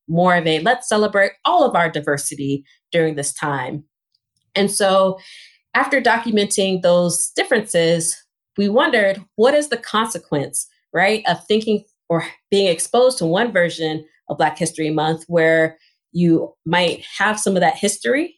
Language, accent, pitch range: English, American, 160-195 Hz